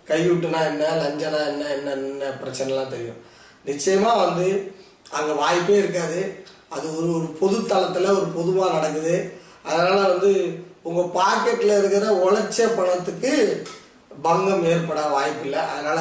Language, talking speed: Tamil, 130 wpm